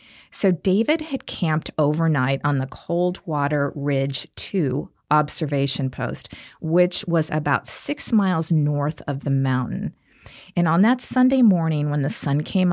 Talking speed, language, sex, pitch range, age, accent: 140 wpm, English, female, 145-180 Hz, 40-59, American